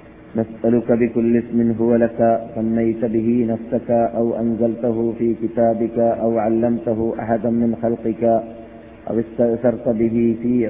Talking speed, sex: 120 wpm, male